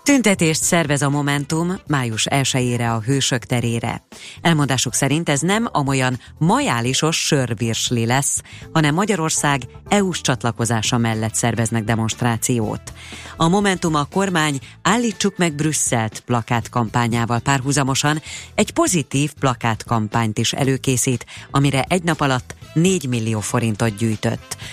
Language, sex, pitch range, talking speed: Hungarian, female, 115-155 Hz, 110 wpm